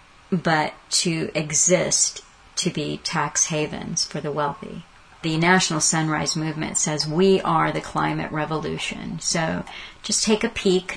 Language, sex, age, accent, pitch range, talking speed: English, female, 40-59, American, 150-175 Hz, 135 wpm